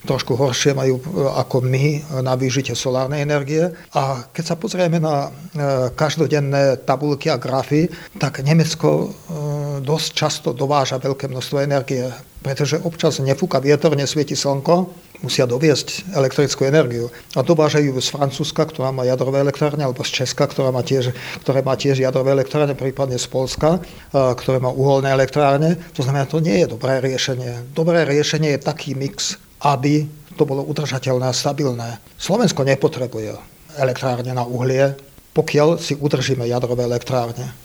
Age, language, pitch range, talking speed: 50-69, Slovak, 130-150 Hz, 145 wpm